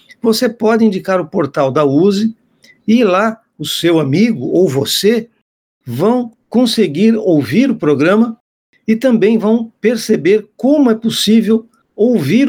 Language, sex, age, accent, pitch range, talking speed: Portuguese, male, 60-79, Brazilian, 145-215 Hz, 130 wpm